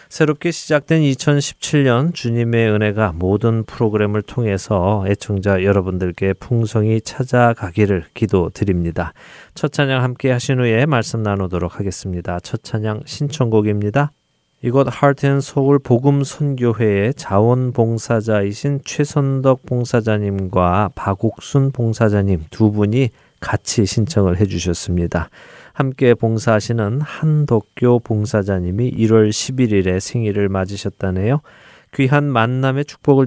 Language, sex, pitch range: Korean, male, 95-125 Hz